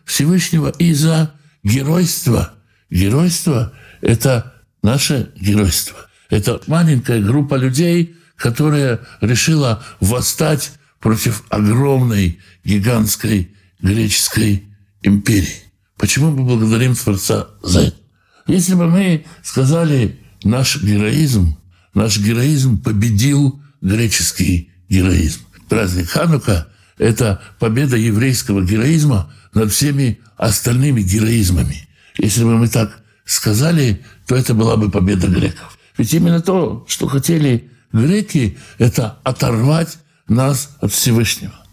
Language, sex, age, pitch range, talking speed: Russian, male, 60-79, 105-150 Hz, 100 wpm